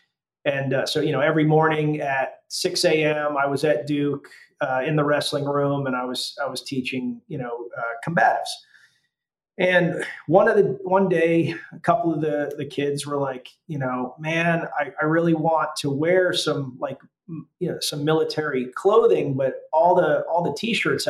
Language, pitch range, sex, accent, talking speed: English, 140-170 Hz, male, American, 185 wpm